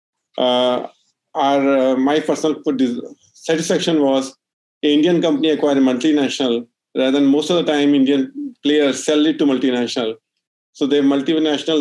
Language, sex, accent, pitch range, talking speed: English, male, Indian, 130-150 Hz, 140 wpm